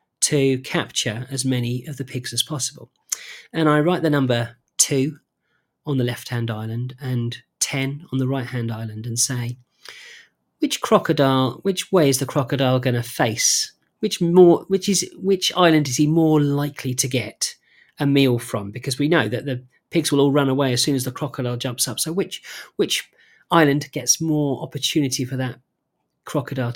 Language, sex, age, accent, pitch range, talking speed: English, male, 40-59, British, 125-150 Hz, 180 wpm